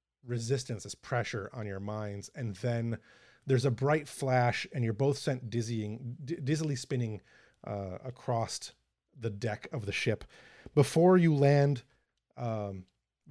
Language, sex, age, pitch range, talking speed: English, male, 30-49, 105-135 Hz, 135 wpm